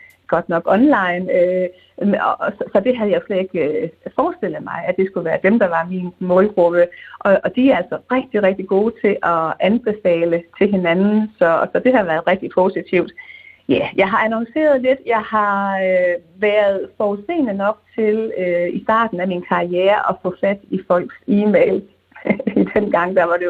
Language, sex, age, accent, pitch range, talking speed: Danish, female, 30-49, native, 180-225 Hz, 170 wpm